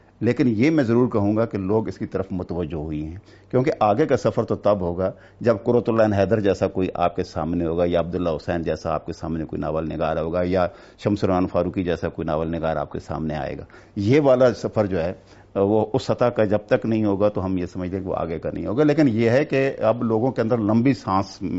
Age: 50-69